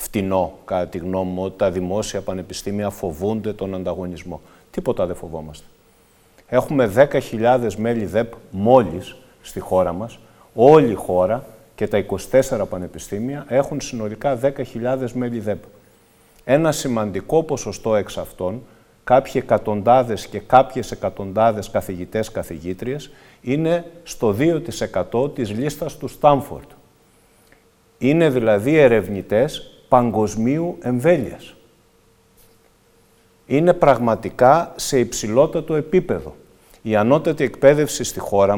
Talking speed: 105 wpm